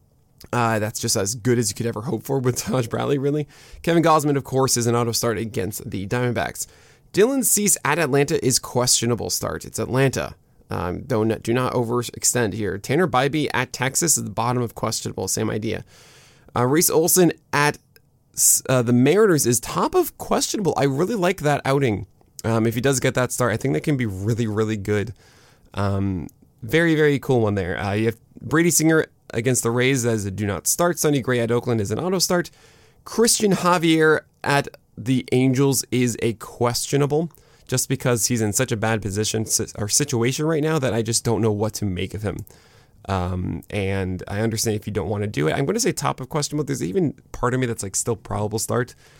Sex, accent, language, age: male, American, English, 20-39